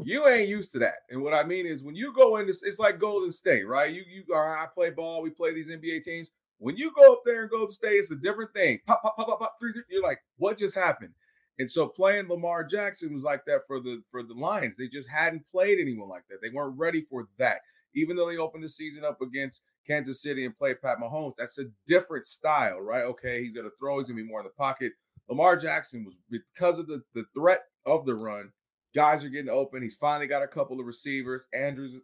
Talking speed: 245 wpm